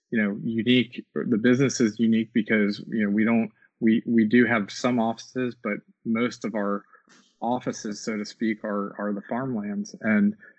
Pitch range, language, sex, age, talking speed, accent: 105-125 Hz, English, male, 20-39, 175 wpm, American